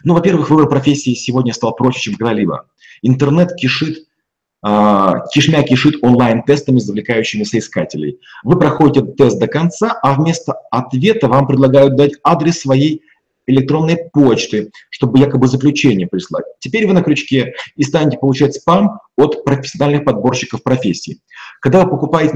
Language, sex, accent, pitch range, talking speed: Russian, male, native, 125-155 Hz, 135 wpm